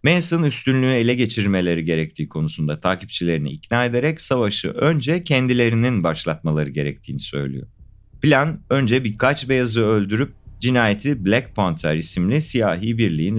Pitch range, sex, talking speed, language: 85-125 Hz, male, 115 wpm, Turkish